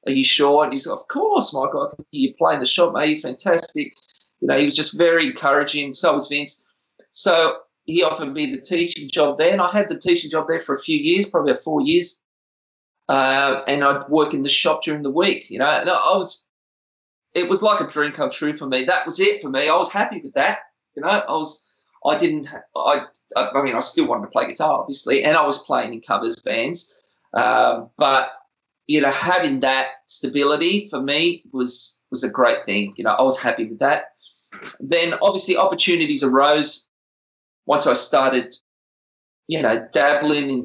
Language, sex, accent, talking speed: English, male, Australian, 200 wpm